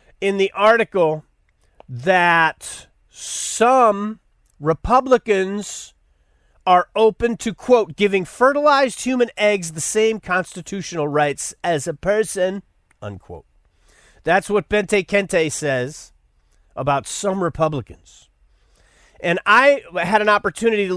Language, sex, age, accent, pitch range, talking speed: English, male, 40-59, American, 145-220 Hz, 105 wpm